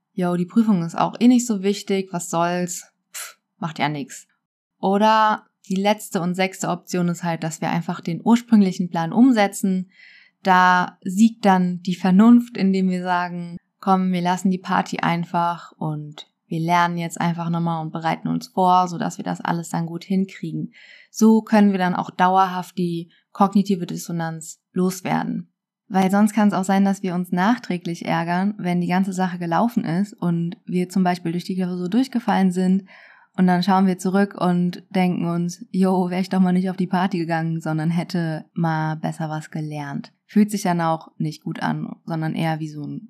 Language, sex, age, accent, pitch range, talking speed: German, female, 20-39, German, 175-200 Hz, 185 wpm